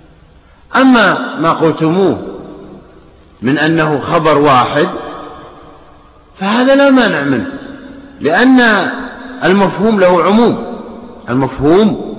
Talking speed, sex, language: 80 wpm, male, Arabic